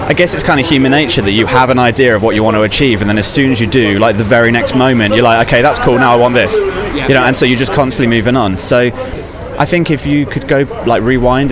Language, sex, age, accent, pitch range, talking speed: English, male, 20-39, British, 105-130 Hz, 295 wpm